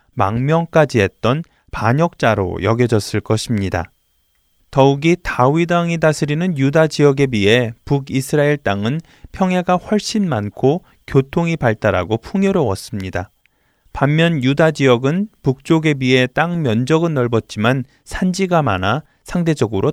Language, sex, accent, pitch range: Korean, male, native, 110-165 Hz